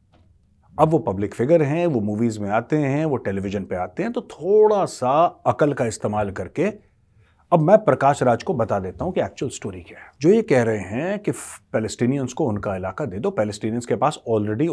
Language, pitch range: Hindi, 105-140 Hz